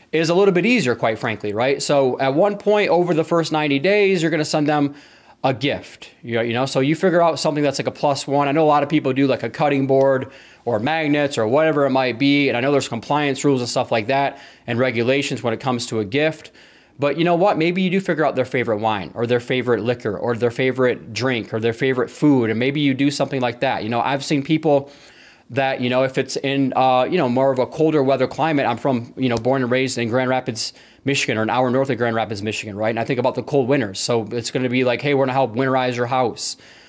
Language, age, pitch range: English, 20-39, 125-145 Hz